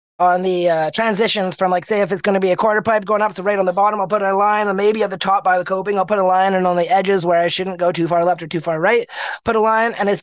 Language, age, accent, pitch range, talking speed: English, 20-39, American, 175-205 Hz, 340 wpm